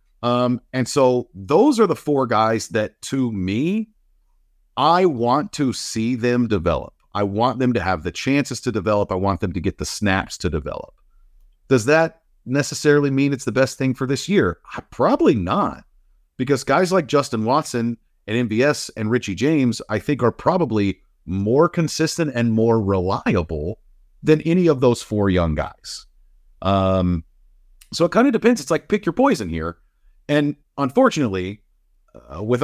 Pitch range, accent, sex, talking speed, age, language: 105-150 Hz, American, male, 165 wpm, 50-69, English